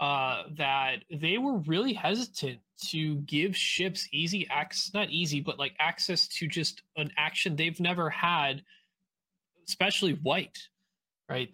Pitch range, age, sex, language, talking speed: 145-190 Hz, 20-39, male, English, 135 wpm